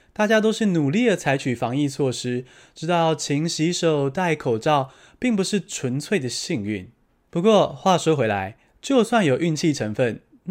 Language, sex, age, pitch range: Chinese, male, 20-39, 125-195 Hz